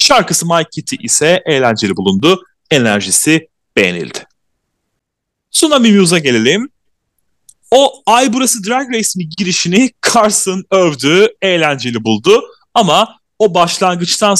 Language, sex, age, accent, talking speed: Turkish, male, 30-49, native, 100 wpm